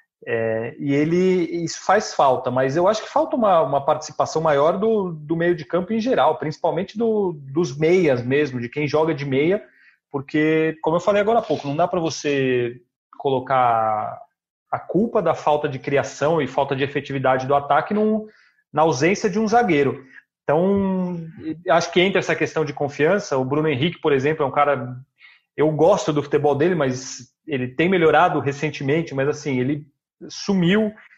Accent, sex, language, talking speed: Brazilian, male, Portuguese, 175 wpm